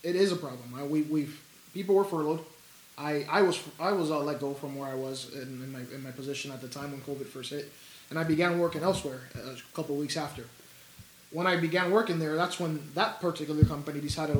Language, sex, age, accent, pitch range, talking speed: English, male, 20-39, American, 145-180 Hz, 230 wpm